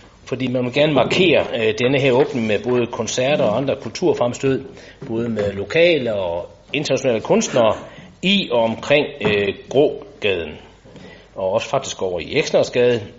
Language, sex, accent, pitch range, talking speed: Danish, male, native, 100-145 Hz, 145 wpm